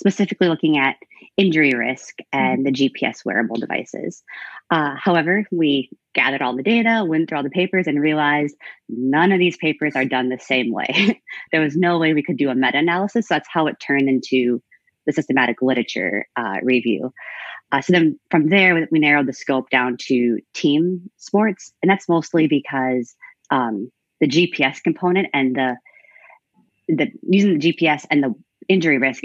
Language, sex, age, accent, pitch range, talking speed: English, female, 30-49, American, 130-170 Hz, 170 wpm